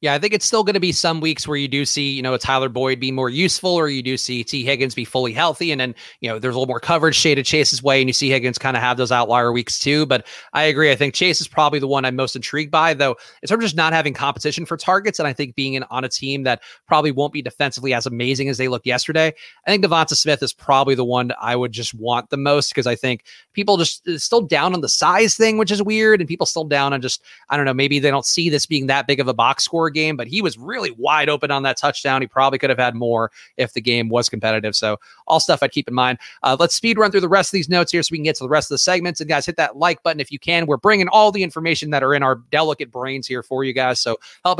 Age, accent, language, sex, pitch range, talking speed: 30-49, American, English, male, 130-170 Hz, 295 wpm